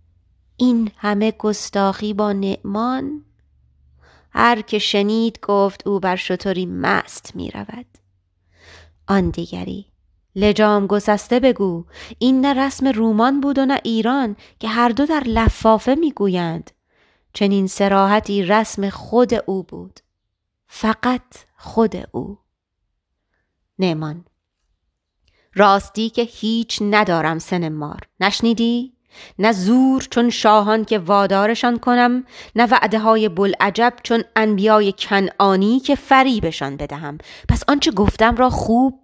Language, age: Persian, 30-49